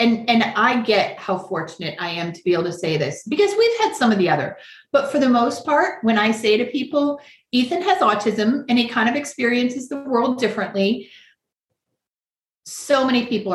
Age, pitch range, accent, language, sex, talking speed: 30-49, 200-255 Hz, American, English, female, 200 wpm